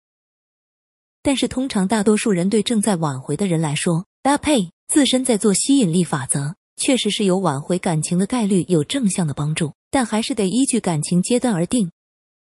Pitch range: 170-235 Hz